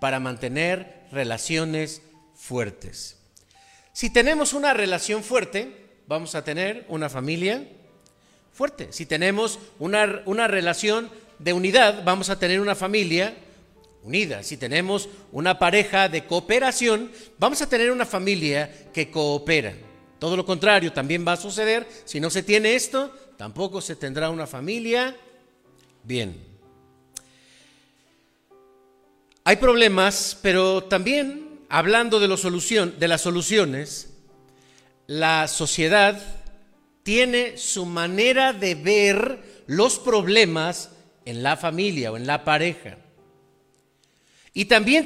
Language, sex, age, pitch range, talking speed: Spanish, male, 50-69, 135-210 Hz, 115 wpm